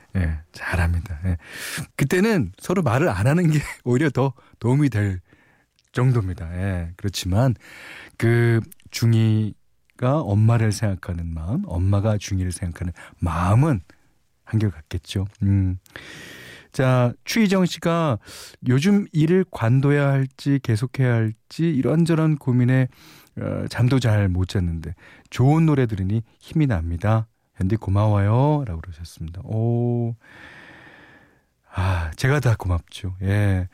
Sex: male